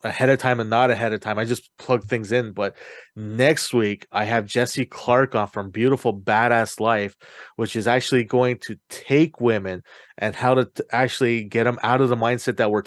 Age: 30-49